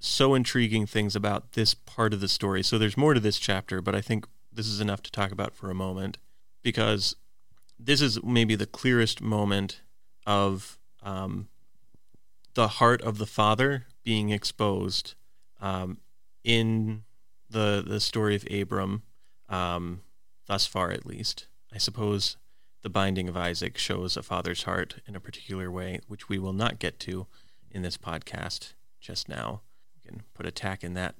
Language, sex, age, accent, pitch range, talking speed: English, male, 30-49, American, 95-115 Hz, 165 wpm